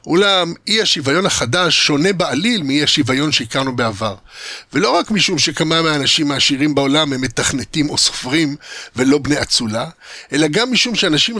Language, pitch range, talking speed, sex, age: Hebrew, 135-180 Hz, 145 wpm, male, 60-79